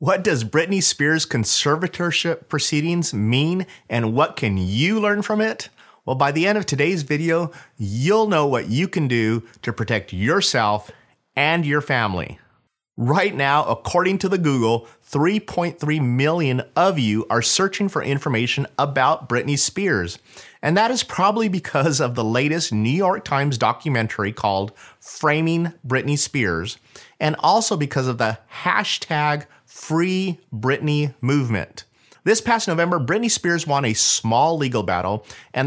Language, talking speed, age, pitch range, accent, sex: English, 145 wpm, 30-49, 120-165 Hz, American, male